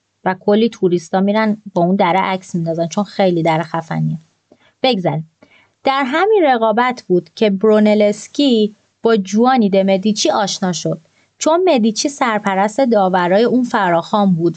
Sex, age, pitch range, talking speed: female, 30-49, 185-245 Hz, 140 wpm